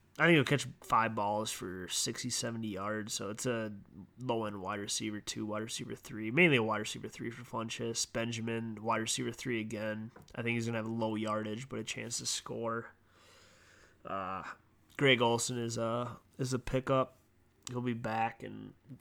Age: 20-39